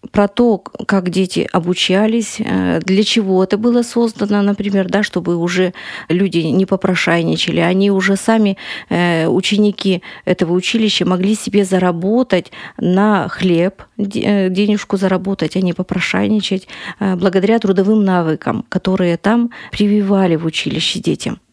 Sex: female